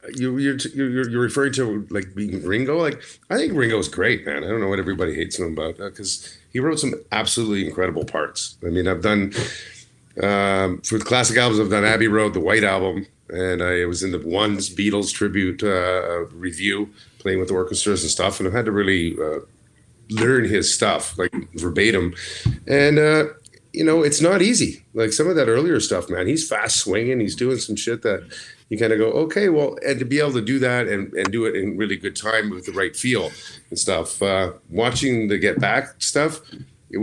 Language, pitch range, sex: English, 95-125 Hz, male